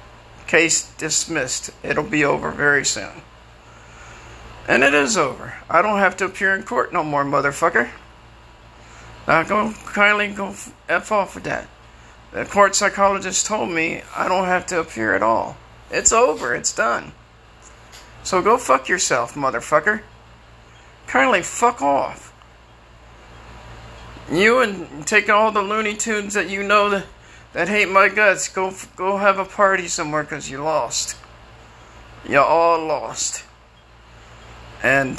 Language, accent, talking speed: English, American, 140 wpm